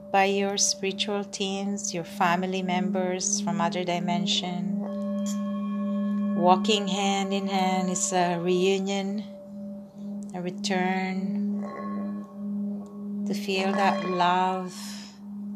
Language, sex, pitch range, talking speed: English, female, 185-205 Hz, 90 wpm